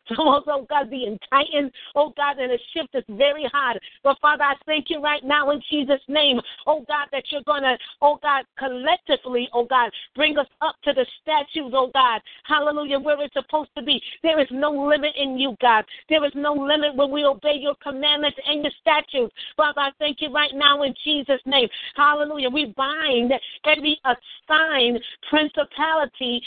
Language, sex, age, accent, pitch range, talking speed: English, female, 50-69, American, 270-300 Hz, 185 wpm